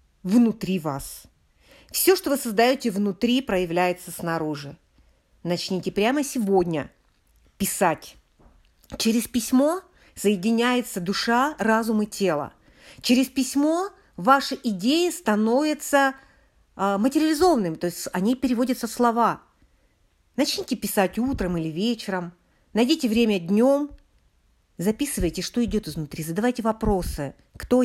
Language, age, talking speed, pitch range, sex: Russian, 40-59, 105 wpm, 170-245 Hz, female